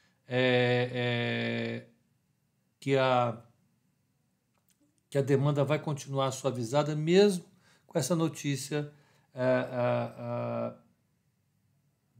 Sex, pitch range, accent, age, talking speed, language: male, 120-150 Hz, Brazilian, 60-79, 85 wpm, Portuguese